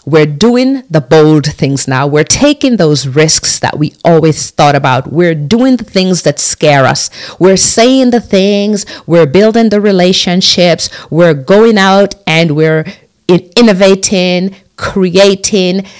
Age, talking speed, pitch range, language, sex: 50-69, 140 wpm, 145-190 Hz, English, female